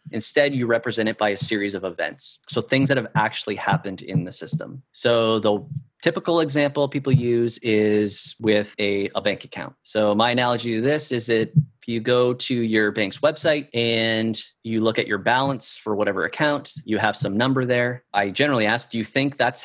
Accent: American